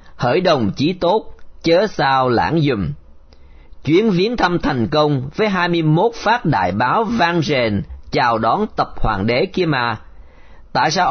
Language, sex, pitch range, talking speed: Vietnamese, male, 115-175 Hz, 160 wpm